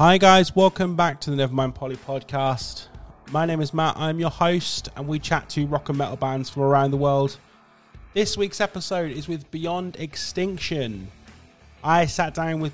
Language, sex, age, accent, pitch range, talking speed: English, male, 30-49, British, 125-150 Hz, 185 wpm